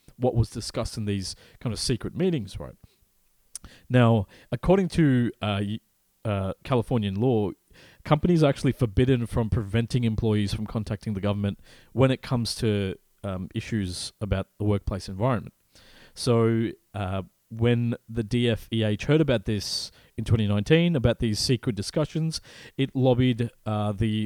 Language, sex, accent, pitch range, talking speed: English, male, Australian, 105-130 Hz, 135 wpm